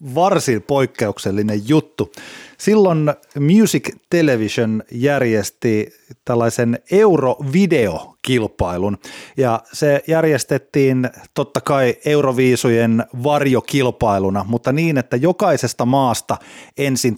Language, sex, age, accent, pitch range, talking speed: Finnish, male, 30-49, native, 110-150 Hz, 75 wpm